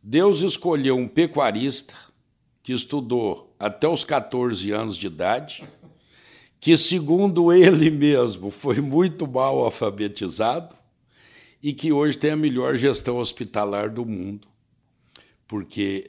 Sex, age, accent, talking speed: male, 60-79, Brazilian, 115 wpm